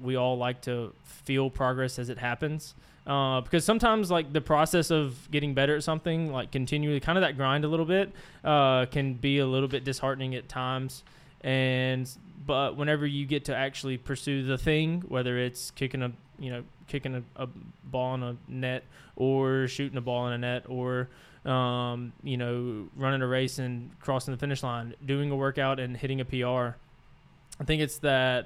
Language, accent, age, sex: English, American, 20-39, male